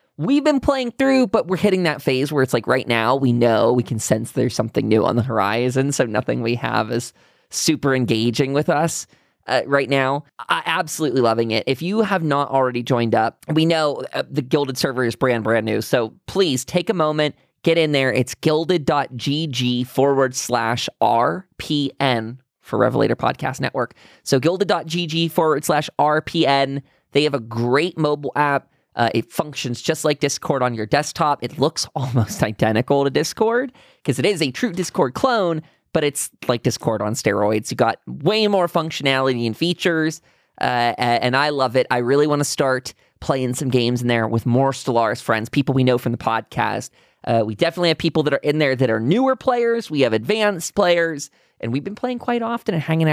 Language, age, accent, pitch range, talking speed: English, 20-39, American, 120-165 Hz, 190 wpm